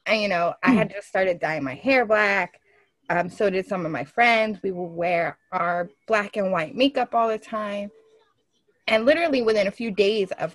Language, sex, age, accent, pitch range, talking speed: English, female, 20-39, American, 185-245 Hz, 205 wpm